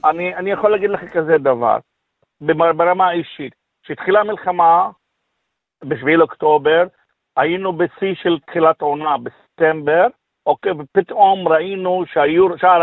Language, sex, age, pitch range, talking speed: Hebrew, male, 50-69, 160-205 Hz, 110 wpm